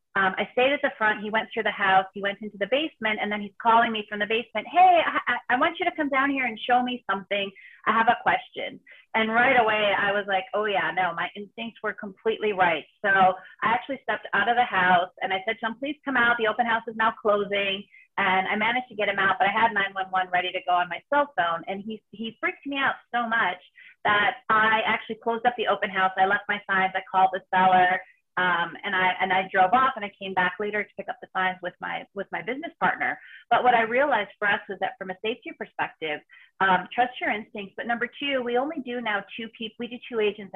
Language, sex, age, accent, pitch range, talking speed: English, female, 30-49, American, 195-240 Hz, 250 wpm